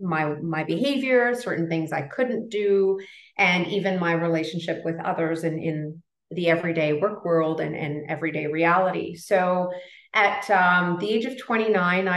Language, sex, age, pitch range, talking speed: English, female, 30-49, 165-195 Hz, 155 wpm